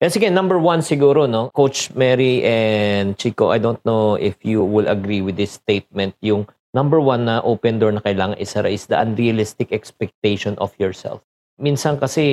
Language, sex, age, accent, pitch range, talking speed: Filipino, male, 50-69, native, 105-135 Hz, 180 wpm